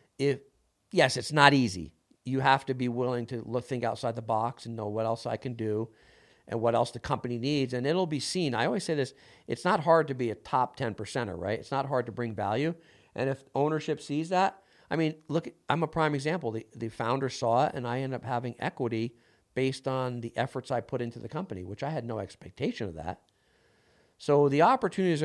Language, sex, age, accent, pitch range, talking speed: English, male, 50-69, American, 110-135 Hz, 225 wpm